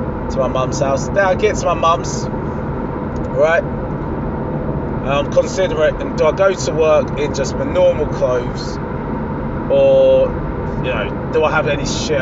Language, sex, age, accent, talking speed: English, male, 20-39, British, 155 wpm